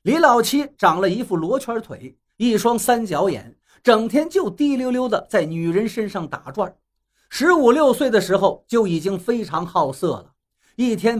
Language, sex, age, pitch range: Chinese, male, 50-69, 180-240 Hz